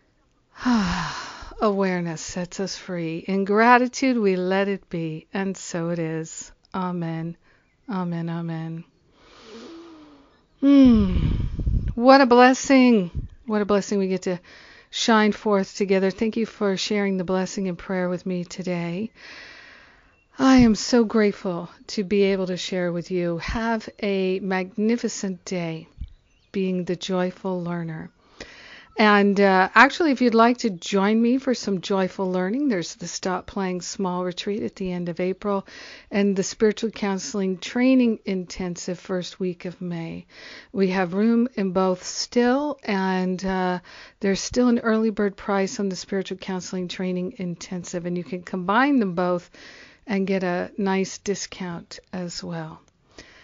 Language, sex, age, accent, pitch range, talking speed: English, female, 50-69, American, 180-220 Hz, 145 wpm